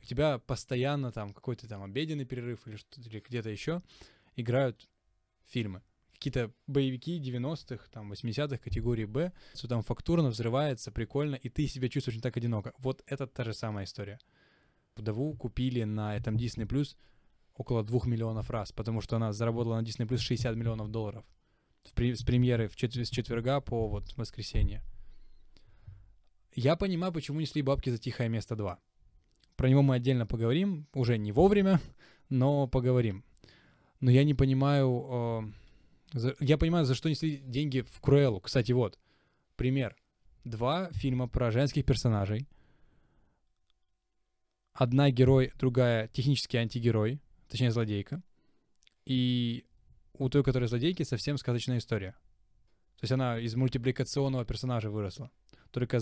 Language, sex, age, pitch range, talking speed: Ukrainian, male, 10-29, 110-135 Hz, 140 wpm